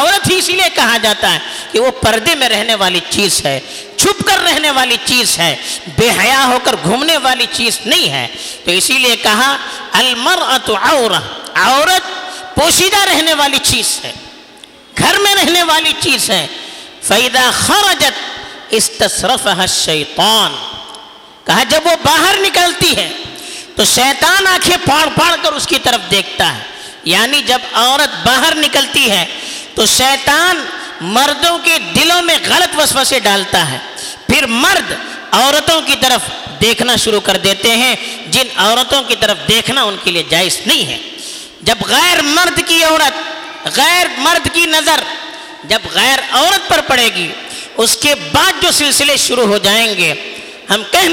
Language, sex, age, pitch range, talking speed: Urdu, female, 50-69, 225-335 Hz, 120 wpm